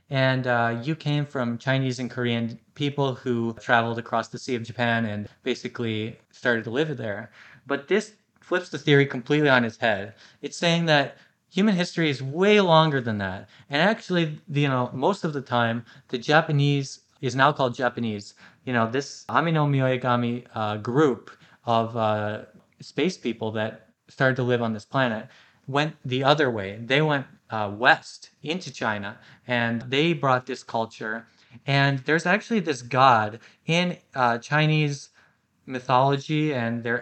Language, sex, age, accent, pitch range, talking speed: English, male, 20-39, American, 115-150 Hz, 160 wpm